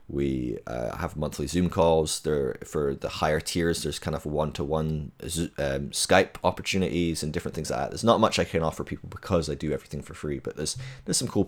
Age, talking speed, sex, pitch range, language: 20-39, 210 wpm, male, 75-90 Hz, English